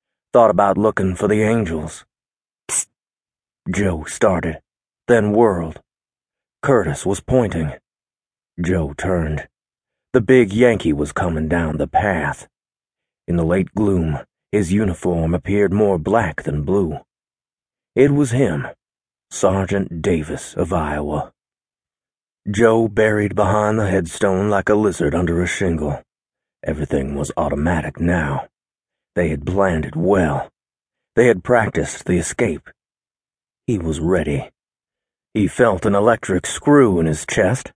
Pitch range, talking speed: 85-110 Hz, 125 wpm